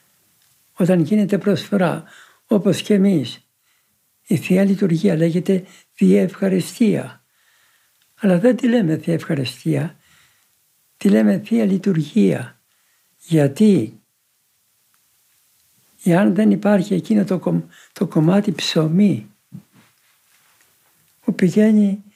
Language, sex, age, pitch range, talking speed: Greek, male, 60-79, 155-205 Hz, 90 wpm